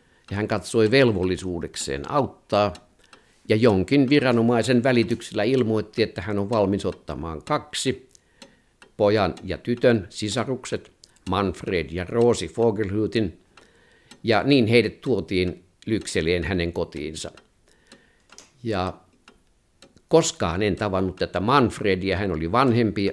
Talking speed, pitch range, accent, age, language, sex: 105 wpm, 90-115 Hz, native, 50-69, Finnish, male